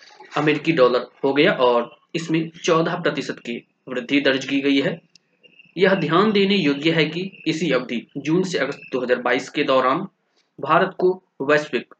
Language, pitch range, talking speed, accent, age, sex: Hindi, 130-170 Hz, 155 wpm, native, 20-39, male